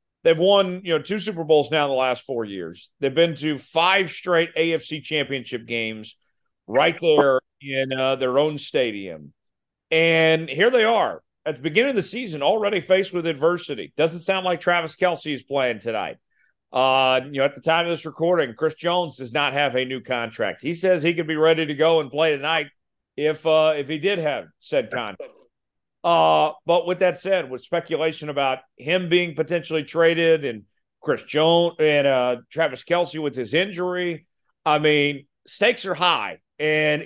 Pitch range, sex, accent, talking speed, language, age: 140-175 Hz, male, American, 185 wpm, English, 40-59